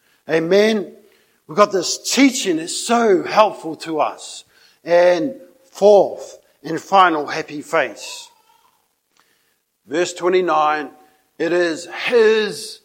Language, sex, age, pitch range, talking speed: English, male, 50-69, 155-225 Hz, 100 wpm